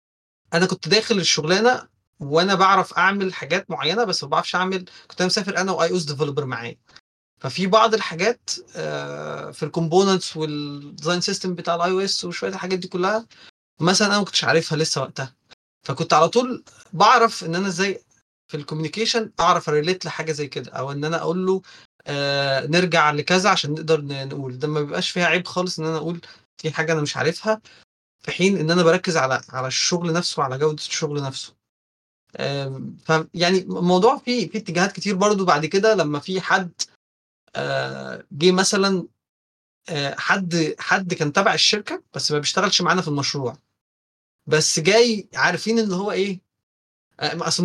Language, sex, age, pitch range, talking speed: Arabic, male, 20-39, 150-190 Hz, 165 wpm